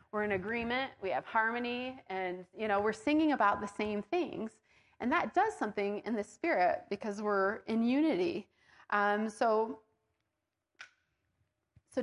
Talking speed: 145 wpm